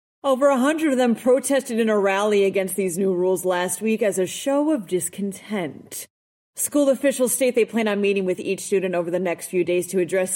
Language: English